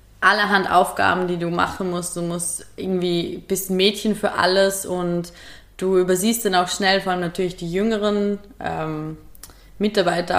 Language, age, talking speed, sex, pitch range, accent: German, 20-39, 155 wpm, female, 155-195 Hz, German